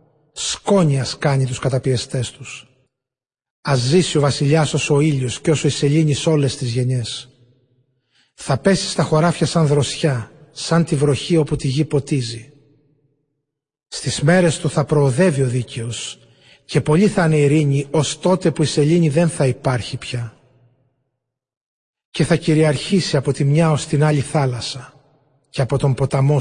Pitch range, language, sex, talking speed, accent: 130-160 Hz, Greek, male, 150 wpm, native